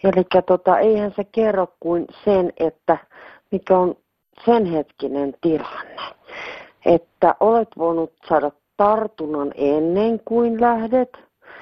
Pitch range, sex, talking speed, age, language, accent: 150-210 Hz, female, 110 wpm, 40-59, Finnish, native